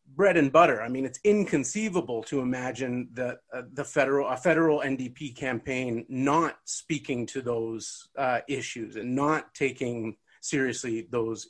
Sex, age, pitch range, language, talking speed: male, 30-49, 125-170 Hz, English, 145 wpm